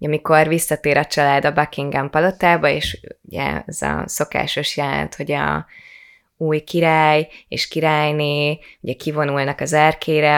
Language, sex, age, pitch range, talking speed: Hungarian, female, 20-39, 145-165 Hz, 135 wpm